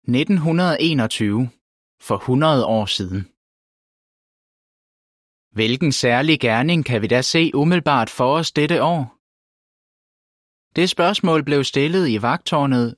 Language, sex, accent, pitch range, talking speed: Danish, male, native, 115-155 Hz, 105 wpm